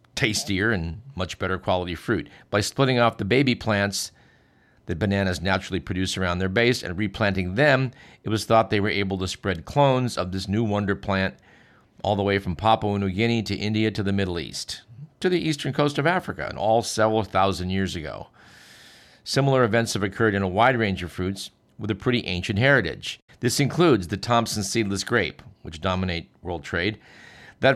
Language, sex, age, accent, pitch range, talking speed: English, male, 50-69, American, 95-120 Hz, 190 wpm